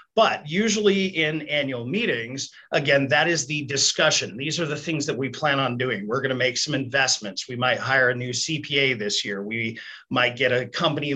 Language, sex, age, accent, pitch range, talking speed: English, male, 40-59, American, 130-175 Hz, 205 wpm